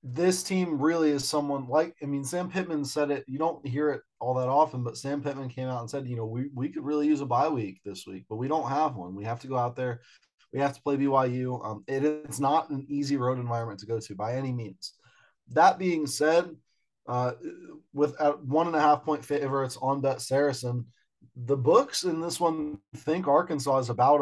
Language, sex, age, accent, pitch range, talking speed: English, male, 20-39, American, 125-155 Hz, 225 wpm